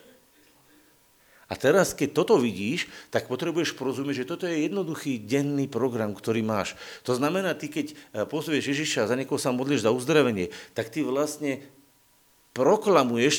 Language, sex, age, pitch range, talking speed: Slovak, male, 50-69, 130-175 Hz, 150 wpm